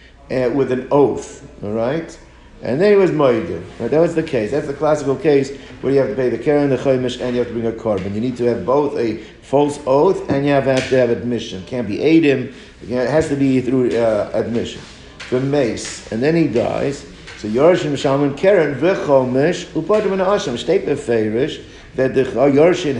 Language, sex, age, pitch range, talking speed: English, male, 60-79, 115-140 Hz, 200 wpm